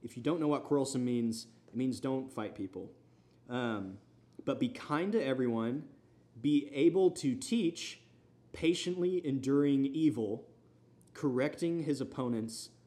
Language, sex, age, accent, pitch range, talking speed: English, male, 20-39, American, 110-135 Hz, 130 wpm